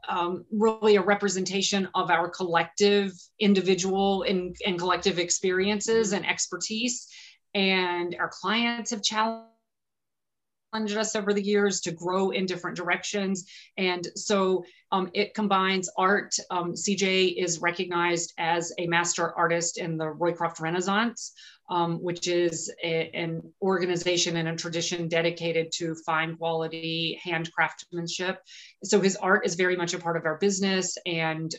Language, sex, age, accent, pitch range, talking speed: English, female, 30-49, American, 165-195 Hz, 135 wpm